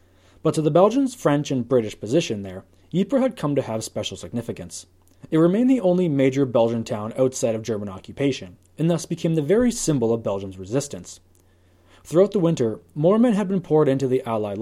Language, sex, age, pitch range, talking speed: English, male, 20-39, 100-160 Hz, 195 wpm